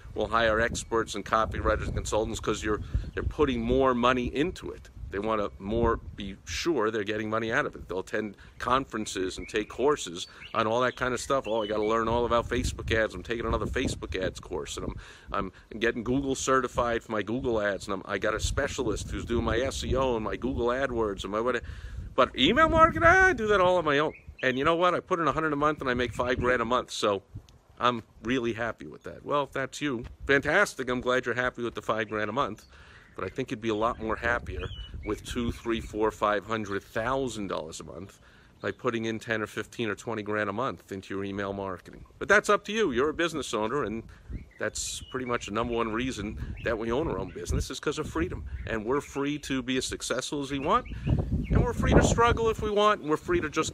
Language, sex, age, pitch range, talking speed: English, male, 50-69, 105-130 Hz, 240 wpm